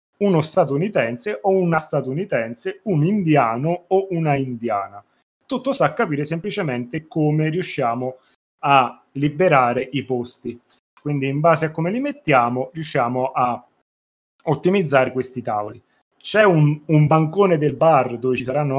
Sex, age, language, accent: male, 30-49, Italian, native